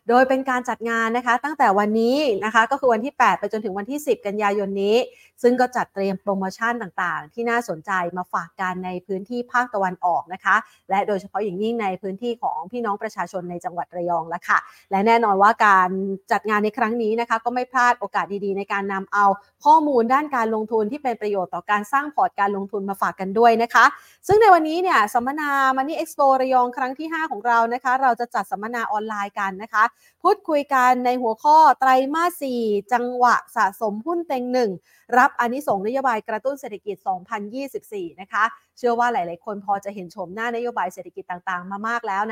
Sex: female